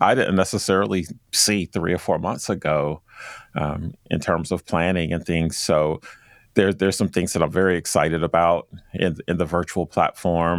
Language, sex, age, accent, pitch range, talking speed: English, male, 40-59, American, 80-90 Hz, 170 wpm